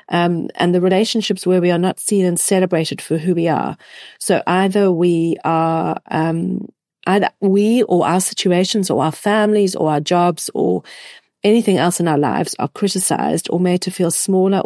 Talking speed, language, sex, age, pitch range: 180 wpm, English, female, 40-59, 165-200 Hz